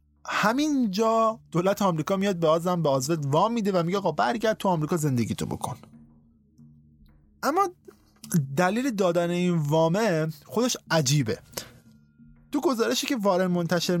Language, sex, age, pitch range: Persian, male, 20-39, 135-190 Hz